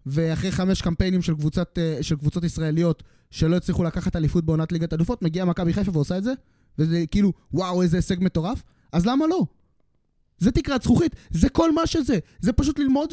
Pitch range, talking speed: 180-245 Hz, 185 wpm